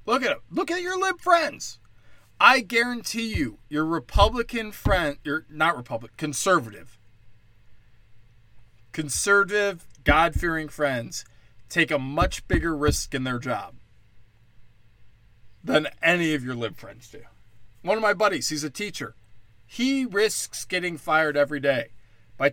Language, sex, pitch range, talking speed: English, male, 110-160 Hz, 135 wpm